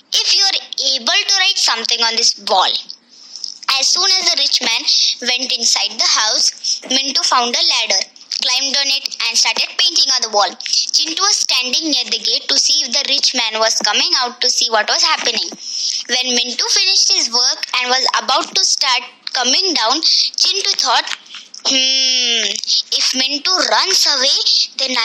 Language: Marathi